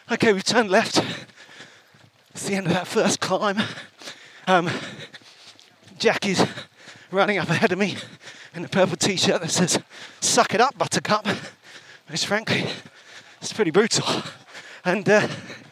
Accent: British